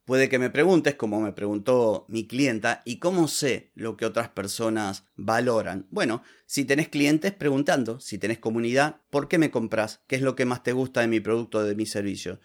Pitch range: 105-130 Hz